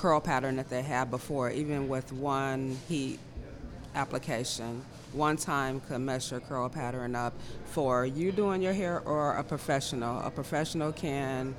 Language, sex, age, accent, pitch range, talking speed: English, female, 40-59, American, 130-150 Hz, 155 wpm